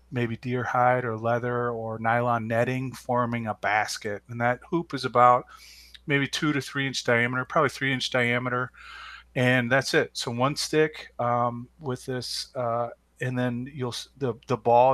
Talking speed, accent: 170 wpm, American